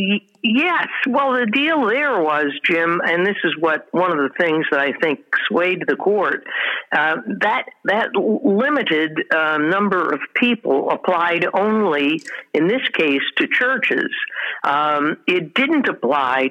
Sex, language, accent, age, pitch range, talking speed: female, English, American, 60-79, 170-240 Hz, 145 wpm